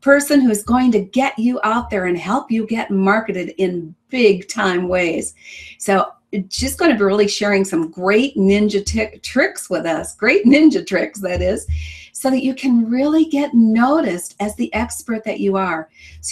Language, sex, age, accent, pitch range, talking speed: English, female, 50-69, American, 195-245 Hz, 185 wpm